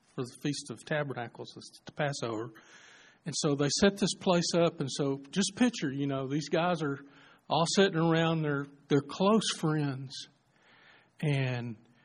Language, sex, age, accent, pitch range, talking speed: English, male, 50-69, American, 130-160 Hz, 155 wpm